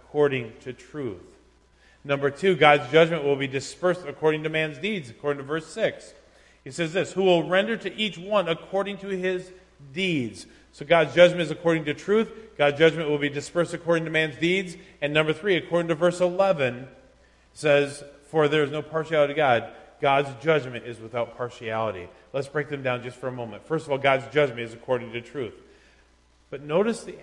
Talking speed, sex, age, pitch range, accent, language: 190 wpm, male, 40-59, 135-190 Hz, American, English